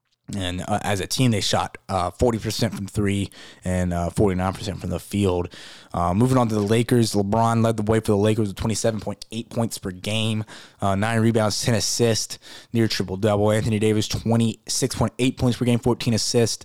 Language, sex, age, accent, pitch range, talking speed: English, male, 20-39, American, 100-120 Hz, 185 wpm